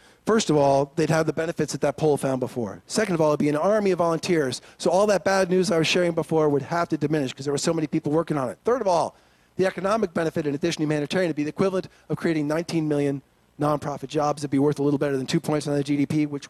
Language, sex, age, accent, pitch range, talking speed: English, male, 40-59, American, 145-175 Hz, 280 wpm